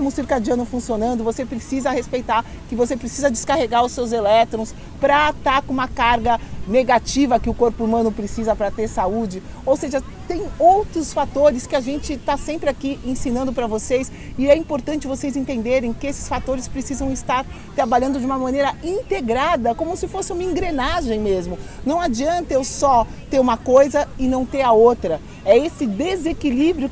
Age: 40-59